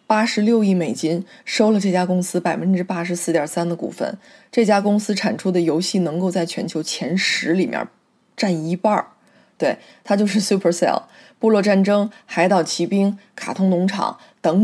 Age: 20-39